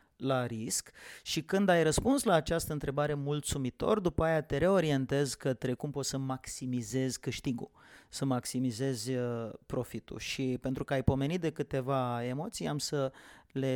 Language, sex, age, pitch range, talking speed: English, male, 30-49, 130-170 Hz, 150 wpm